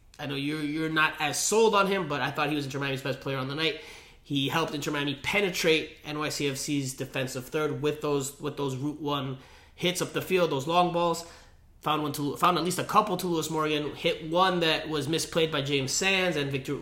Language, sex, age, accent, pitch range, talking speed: English, male, 30-49, American, 130-155 Hz, 225 wpm